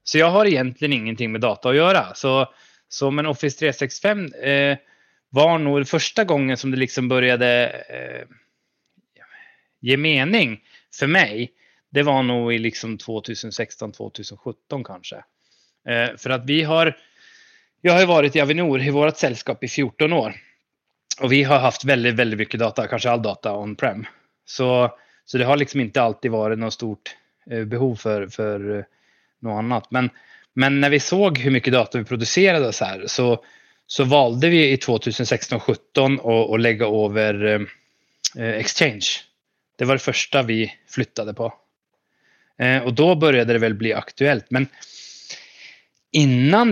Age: 20-39